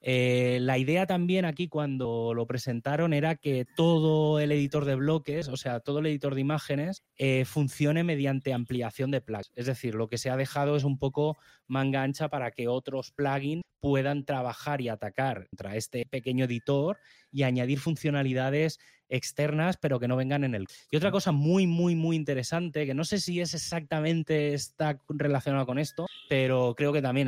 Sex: male